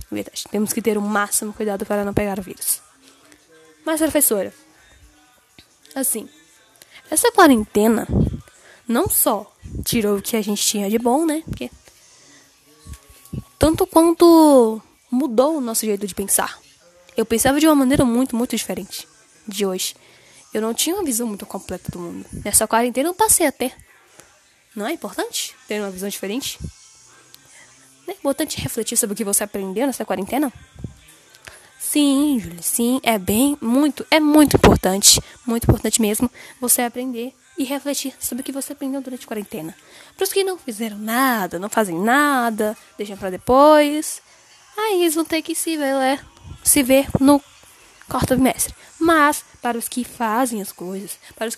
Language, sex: Portuguese, female